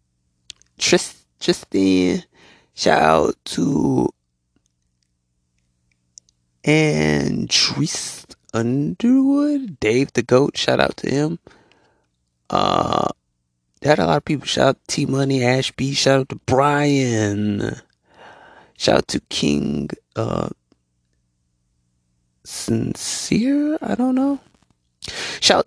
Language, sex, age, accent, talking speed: English, male, 20-39, American, 90 wpm